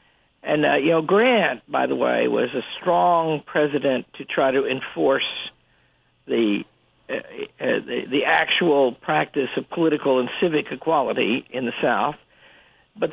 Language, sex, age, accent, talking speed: English, male, 60-79, American, 140 wpm